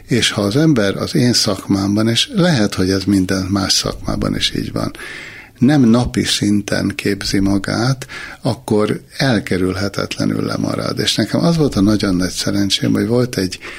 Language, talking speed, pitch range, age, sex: Hungarian, 155 wpm, 95-110 Hz, 60-79, male